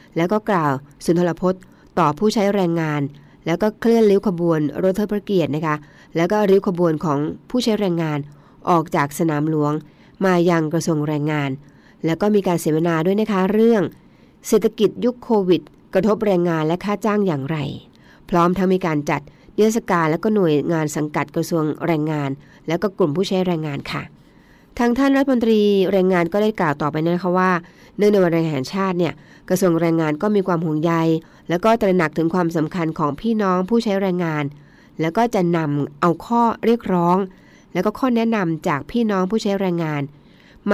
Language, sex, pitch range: Thai, female, 160-205 Hz